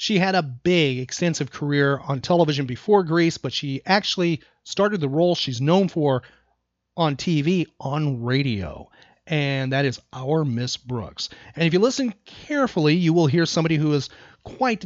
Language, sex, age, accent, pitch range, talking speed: English, male, 40-59, American, 140-190 Hz, 165 wpm